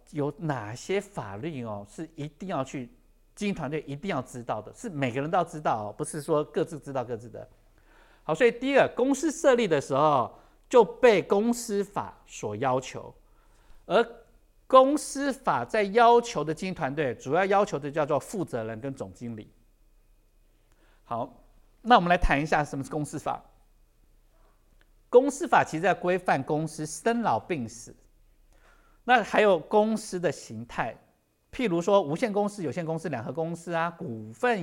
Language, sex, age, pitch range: Chinese, male, 50-69, 135-205 Hz